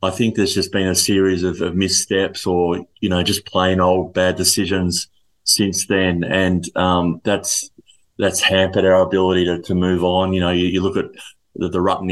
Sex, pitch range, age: male, 90-100 Hz, 20-39